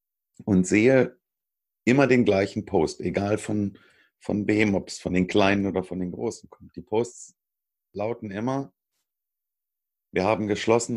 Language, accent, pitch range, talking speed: German, German, 95-125 Hz, 150 wpm